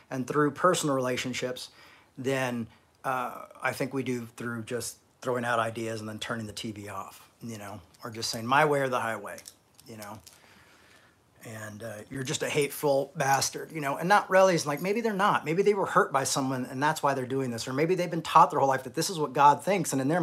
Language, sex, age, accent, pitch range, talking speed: English, male, 40-59, American, 130-210 Hz, 235 wpm